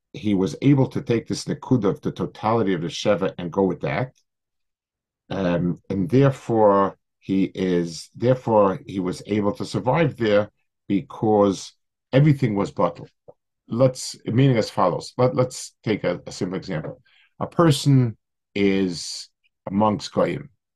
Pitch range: 95-135 Hz